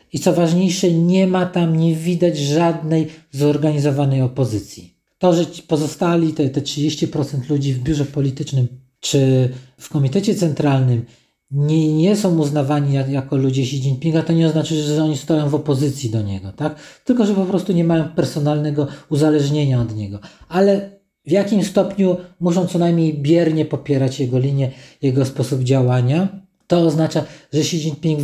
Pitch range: 135-165 Hz